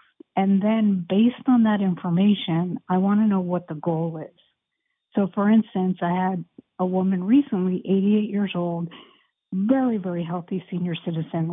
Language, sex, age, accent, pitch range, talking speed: English, female, 50-69, American, 175-205 Hz, 155 wpm